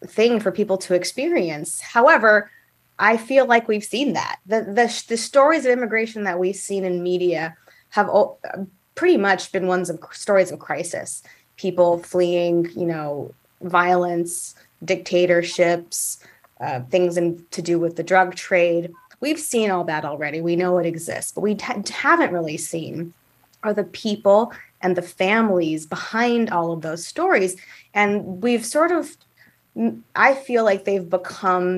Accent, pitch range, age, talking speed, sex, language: American, 175-215 Hz, 20-39, 155 wpm, female, English